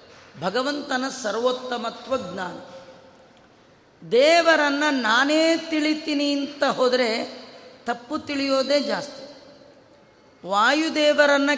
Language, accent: Kannada, native